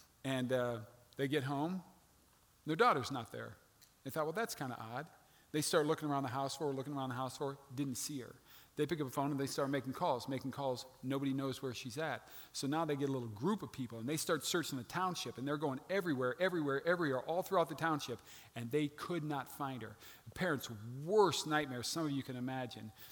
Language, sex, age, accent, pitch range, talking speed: English, male, 40-59, American, 130-165 Hz, 235 wpm